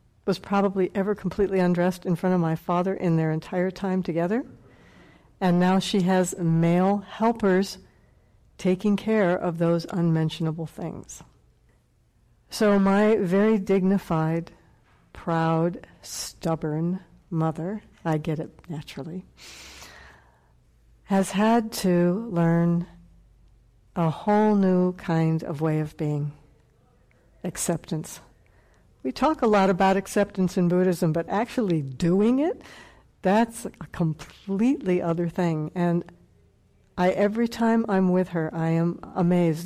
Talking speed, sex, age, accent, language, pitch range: 115 wpm, female, 60-79, American, English, 160-200 Hz